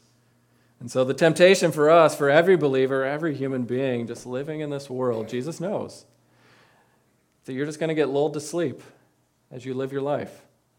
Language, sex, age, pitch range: English, male, 40-59, 125-150 Hz